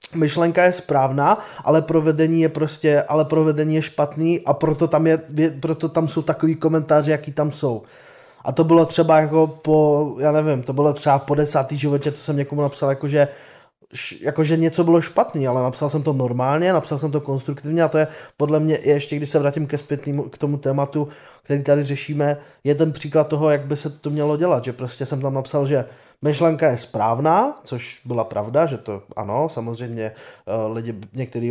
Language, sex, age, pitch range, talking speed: Czech, male, 20-39, 120-155 Hz, 190 wpm